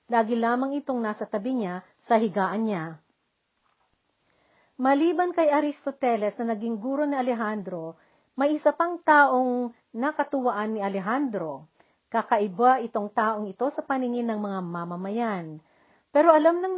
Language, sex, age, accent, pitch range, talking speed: Filipino, female, 40-59, native, 210-270 Hz, 130 wpm